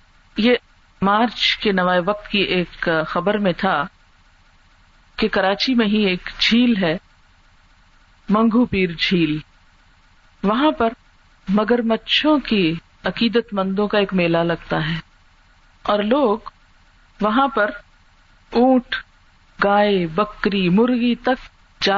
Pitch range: 175-245 Hz